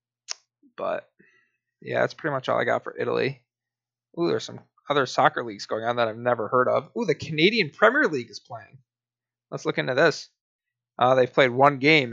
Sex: male